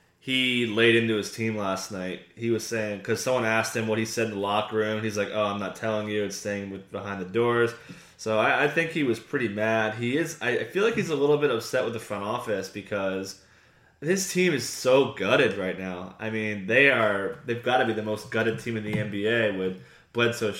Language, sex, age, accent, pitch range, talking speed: English, male, 20-39, American, 100-120 Hz, 240 wpm